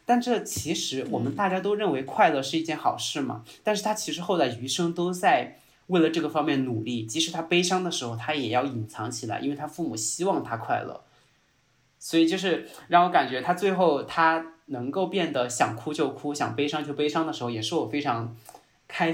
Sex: male